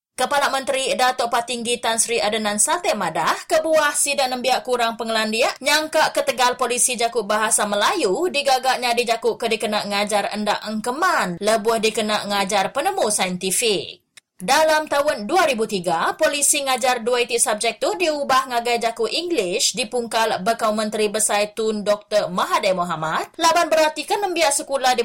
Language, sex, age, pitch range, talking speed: English, female, 20-39, 210-295 Hz, 135 wpm